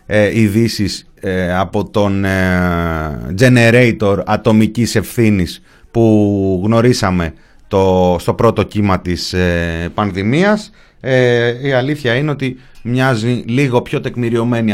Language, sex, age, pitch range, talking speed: Greek, male, 30-49, 100-140 Hz, 85 wpm